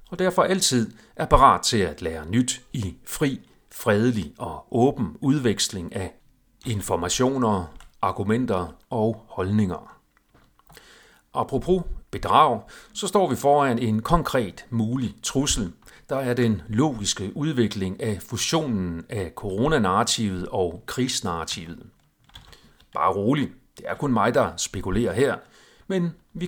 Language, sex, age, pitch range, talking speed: Danish, male, 40-59, 105-145 Hz, 120 wpm